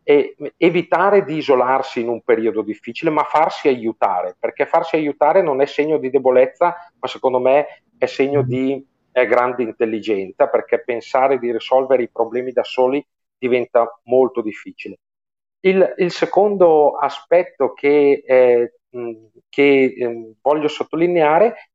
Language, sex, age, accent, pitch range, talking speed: Italian, male, 40-59, native, 125-165 Hz, 130 wpm